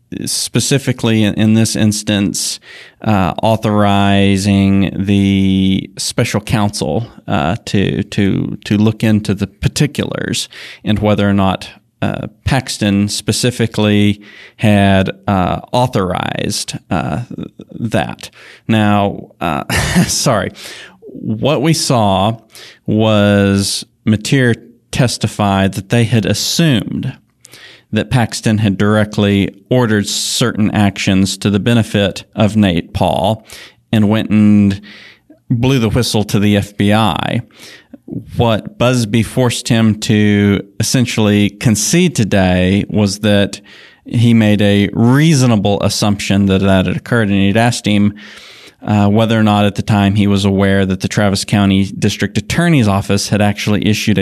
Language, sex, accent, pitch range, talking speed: English, male, American, 100-115 Hz, 120 wpm